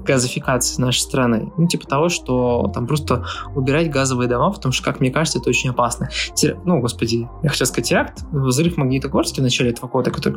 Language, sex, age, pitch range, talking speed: Russian, male, 20-39, 125-165 Hz, 195 wpm